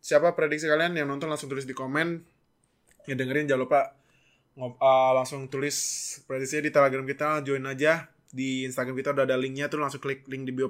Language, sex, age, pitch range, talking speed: Indonesian, male, 20-39, 125-150 Hz, 195 wpm